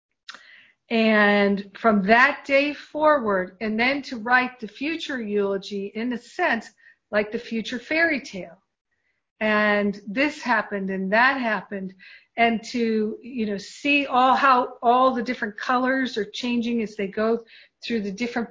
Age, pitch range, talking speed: 50-69, 200-240 Hz, 145 wpm